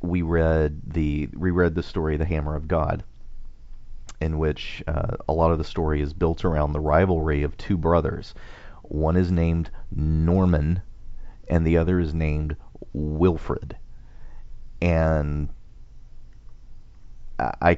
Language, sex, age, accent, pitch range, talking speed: English, male, 40-59, American, 75-85 Hz, 130 wpm